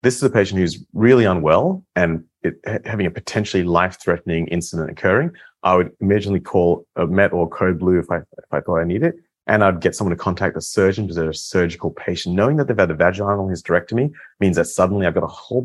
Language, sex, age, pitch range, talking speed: English, male, 30-49, 80-105 Hz, 220 wpm